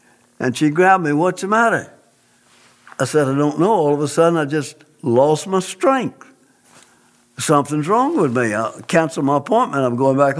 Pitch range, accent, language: 135-170 Hz, American, English